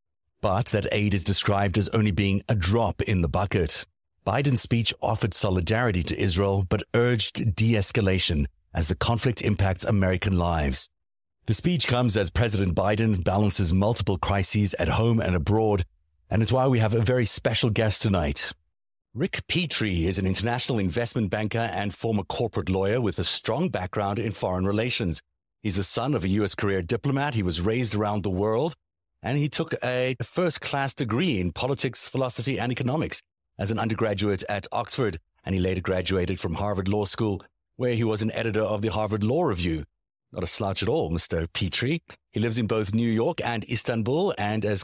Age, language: 60-79, English